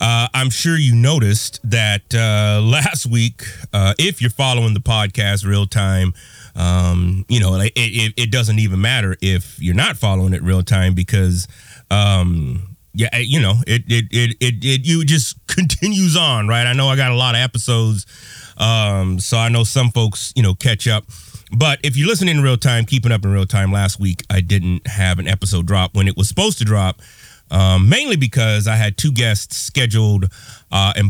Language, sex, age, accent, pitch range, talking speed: English, male, 30-49, American, 100-130 Hz, 195 wpm